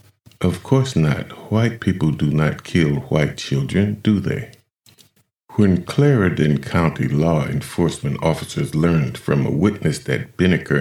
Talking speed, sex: 135 wpm, male